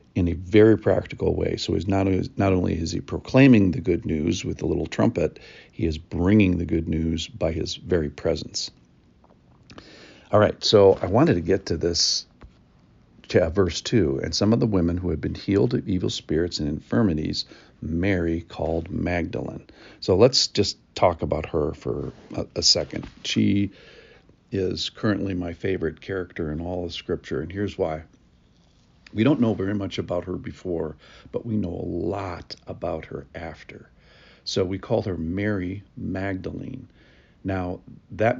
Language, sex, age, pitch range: English, male, 50-69, 85-100 Hz